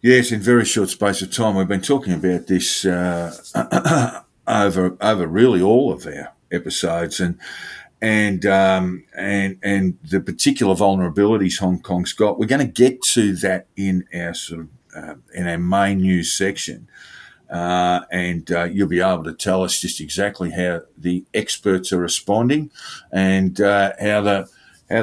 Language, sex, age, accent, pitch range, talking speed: English, male, 50-69, Australian, 90-105 Hz, 160 wpm